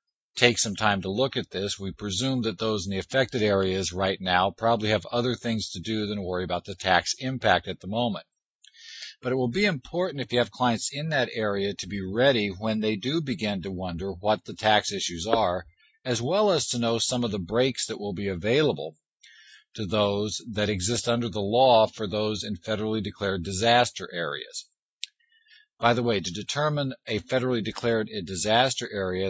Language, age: English, 50-69